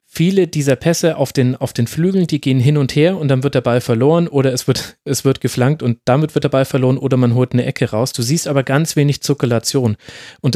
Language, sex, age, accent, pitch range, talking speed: German, male, 30-49, German, 125-150 Hz, 240 wpm